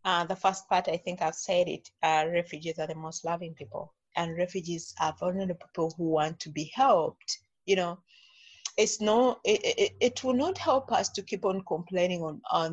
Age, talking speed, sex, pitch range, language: 30-49, 205 wpm, female, 165-210 Hz, English